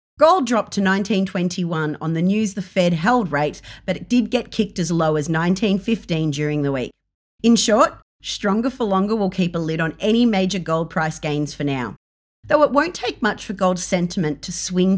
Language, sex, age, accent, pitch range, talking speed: English, female, 40-59, Australian, 165-230 Hz, 200 wpm